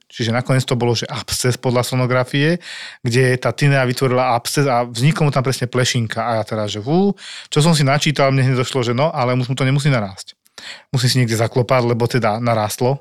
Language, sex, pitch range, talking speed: Slovak, male, 120-140 Hz, 205 wpm